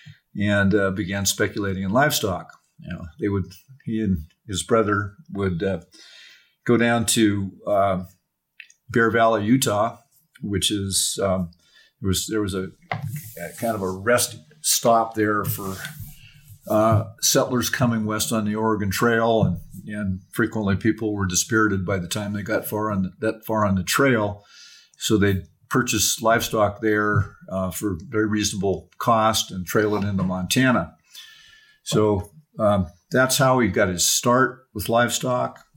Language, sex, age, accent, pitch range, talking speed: English, male, 50-69, American, 95-115 Hz, 155 wpm